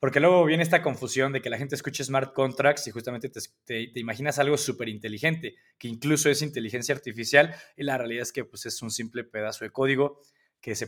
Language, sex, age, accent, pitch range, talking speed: Spanish, male, 20-39, Mexican, 115-150 Hz, 220 wpm